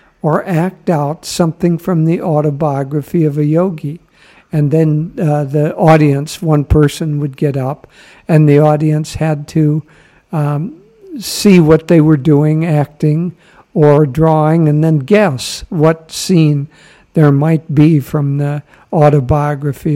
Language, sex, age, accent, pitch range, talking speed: English, male, 60-79, American, 145-175 Hz, 135 wpm